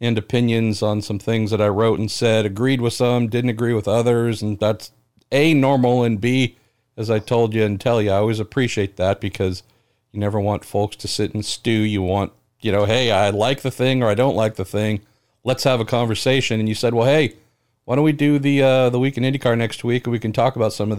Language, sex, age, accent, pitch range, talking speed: English, male, 50-69, American, 110-135 Hz, 245 wpm